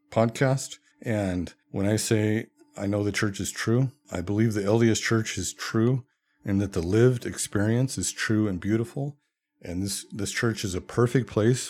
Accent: American